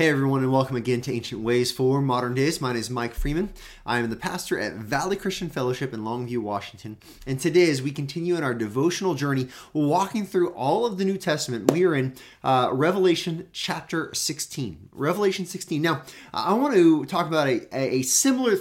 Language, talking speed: English, 195 wpm